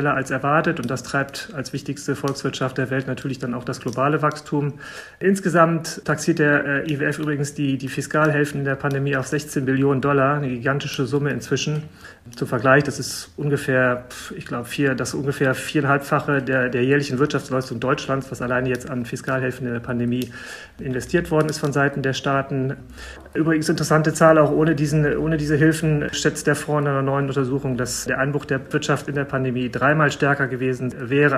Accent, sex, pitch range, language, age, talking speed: German, male, 130-150 Hz, German, 40-59, 180 wpm